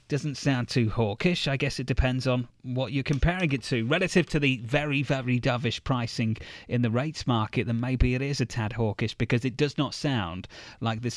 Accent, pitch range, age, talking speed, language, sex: British, 115-140 Hz, 30-49, 210 wpm, English, male